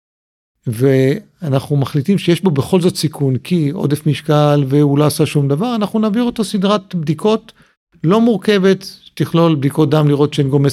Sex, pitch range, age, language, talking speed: male, 135-175 Hz, 50-69, Hebrew, 155 wpm